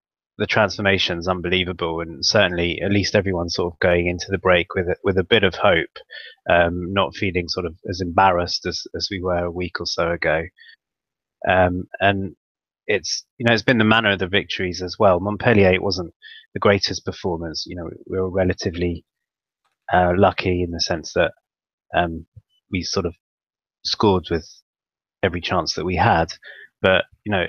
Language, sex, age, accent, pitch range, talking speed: English, male, 20-39, British, 90-100 Hz, 180 wpm